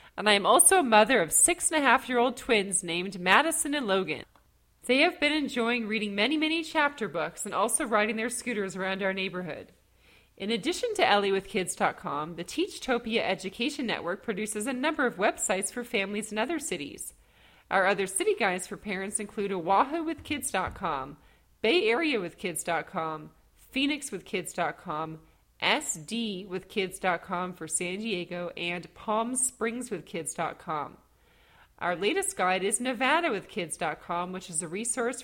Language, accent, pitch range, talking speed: English, American, 185-250 Hz, 155 wpm